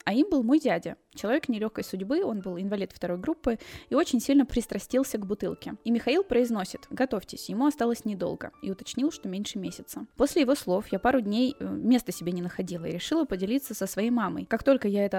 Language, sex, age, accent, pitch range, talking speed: Russian, female, 10-29, native, 195-250 Hz, 200 wpm